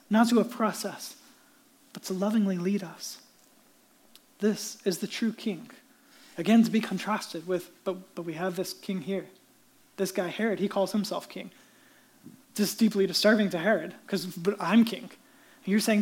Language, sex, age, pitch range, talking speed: English, male, 20-39, 195-255 Hz, 170 wpm